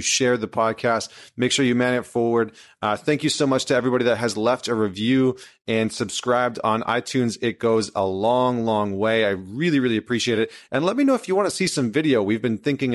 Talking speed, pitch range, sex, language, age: 230 wpm, 105-125 Hz, male, English, 30-49